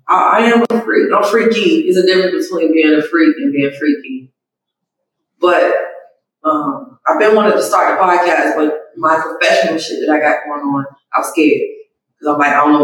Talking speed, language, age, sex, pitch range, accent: 210 wpm, English, 20-39, female, 155-205 Hz, American